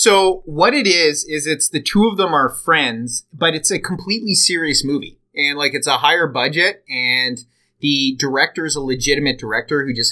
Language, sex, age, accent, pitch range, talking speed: English, male, 30-49, American, 125-170 Hz, 195 wpm